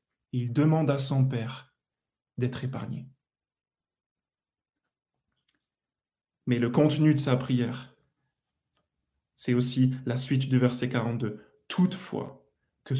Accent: French